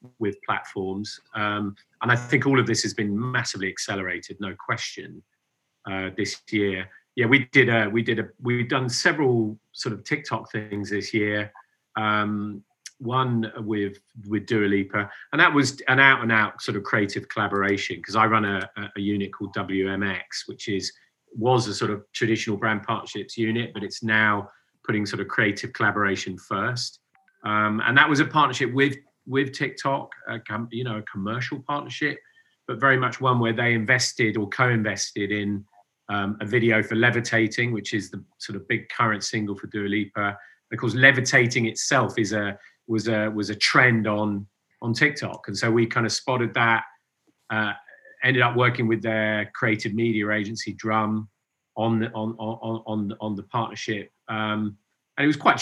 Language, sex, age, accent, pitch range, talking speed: English, male, 40-59, British, 105-120 Hz, 175 wpm